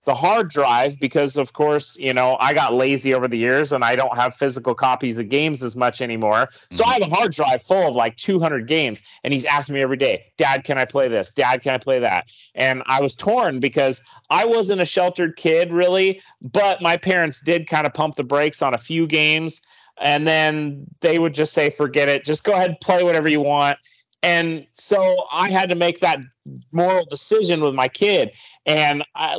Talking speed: 215 wpm